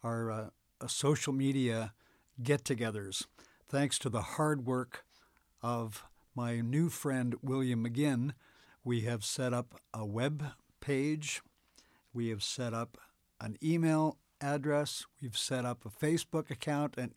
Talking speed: 130 wpm